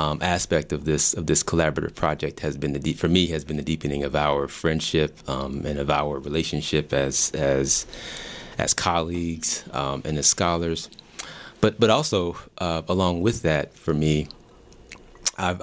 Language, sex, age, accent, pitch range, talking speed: English, male, 30-49, American, 75-85 Hz, 170 wpm